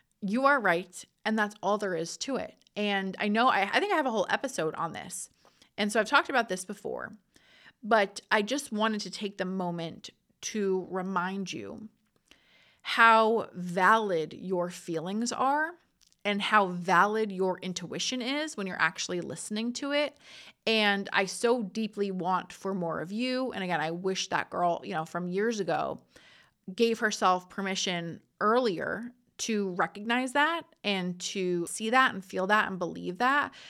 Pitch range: 185-225 Hz